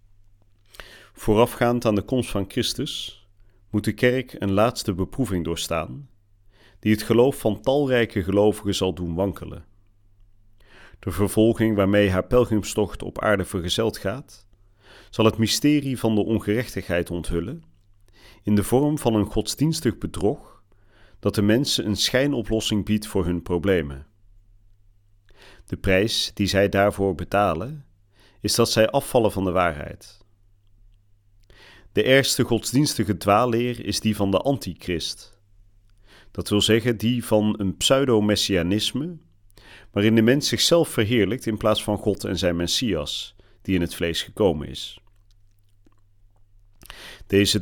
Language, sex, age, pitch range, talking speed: Dutch, male, 40-59, 100-110 Hz, 130 wpm